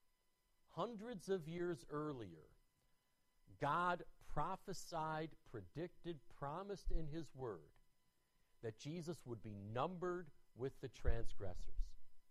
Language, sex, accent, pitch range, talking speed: English, male, American, 115-175 Hz, 95 wpm